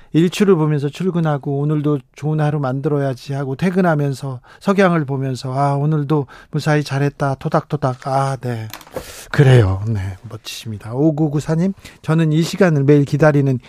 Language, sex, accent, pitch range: Korean, male, native, 140-185 Hz